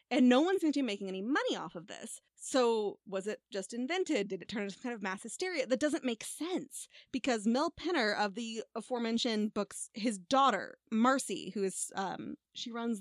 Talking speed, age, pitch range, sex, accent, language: 210 wpm, 20-39, 195-270 Hz, female, American, English